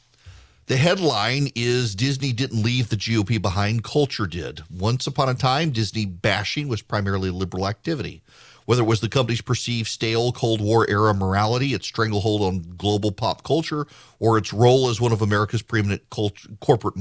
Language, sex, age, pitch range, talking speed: English, male, 40-59, 105-130 Hz, 170 wpm